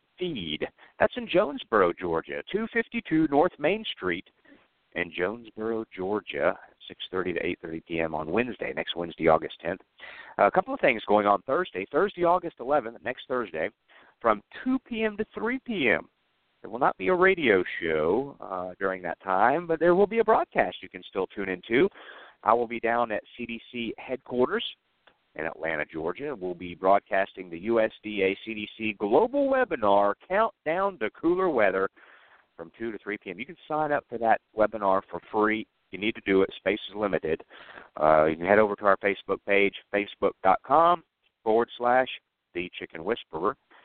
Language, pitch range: English, 100-155 Hz